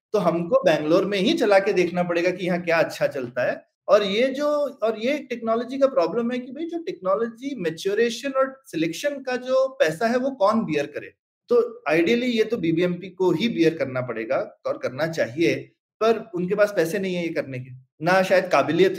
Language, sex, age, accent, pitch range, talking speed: Hindi, male, 30-49, native, 175-250 Hz, 200 wpm